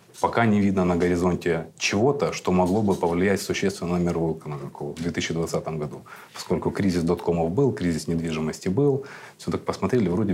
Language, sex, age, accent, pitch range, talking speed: Russian, male, 30-49, native, 85-95 Hz, 155 wpm